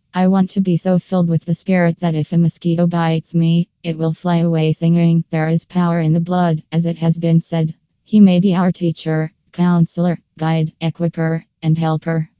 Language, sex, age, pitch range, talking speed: English, female, 20-39, 165-180 Hz, 200 wpm